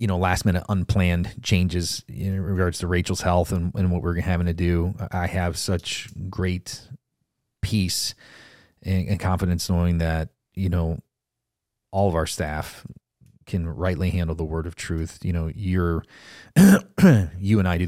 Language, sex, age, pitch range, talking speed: English, male, 30-49, 85-105 Hz, 160 wpm